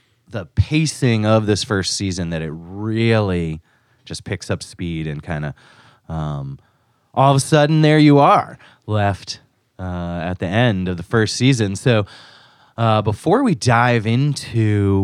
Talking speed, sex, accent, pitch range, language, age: 155 wpm, male, American, 90-120 Hz, English, 30-49